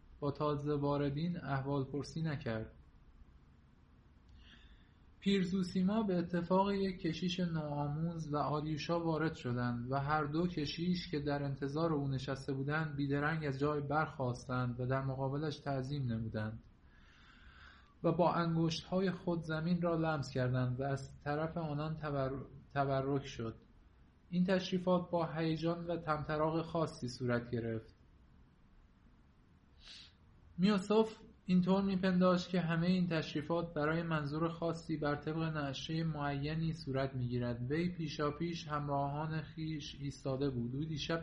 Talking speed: 120 wpm